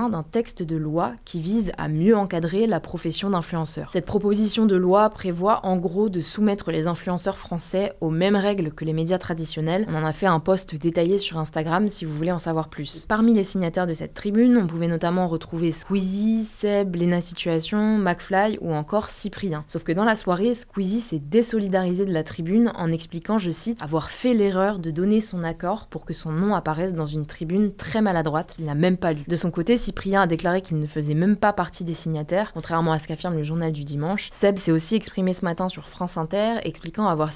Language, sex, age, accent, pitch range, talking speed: French, female, 20-39, French, 165-205 Hz, 220 wpm